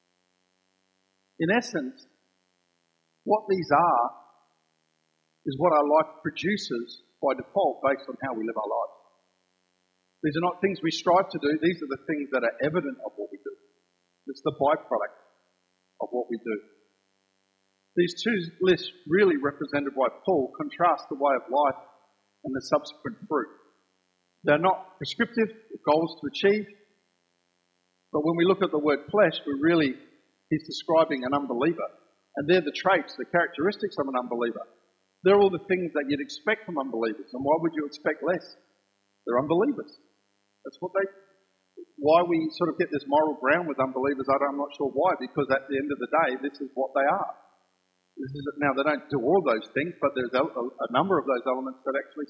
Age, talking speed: 50-69, 175 wpm